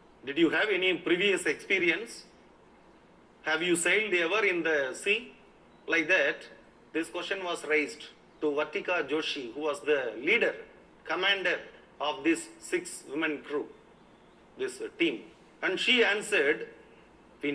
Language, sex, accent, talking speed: Tamil, male, native, 130 wpm